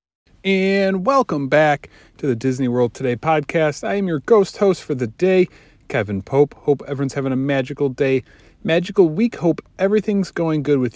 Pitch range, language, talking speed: 105-150 Hz, English, 175 wpm